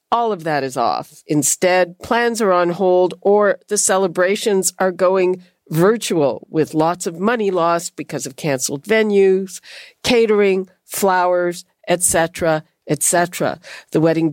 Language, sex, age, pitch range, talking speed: English, female, 50-69, 160-210 Hz, 130 wpm